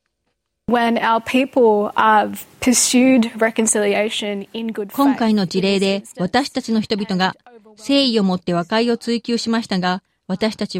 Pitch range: 195-245 Hz